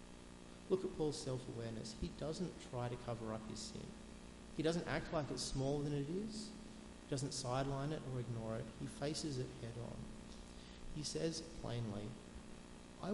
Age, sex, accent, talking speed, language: 30-49, male, Australian, 175 wpm, English